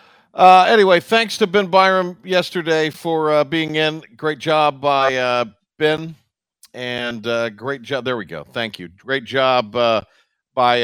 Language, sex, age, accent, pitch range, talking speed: English, male, 50-69, American, 120-180 Hz, 160 wpm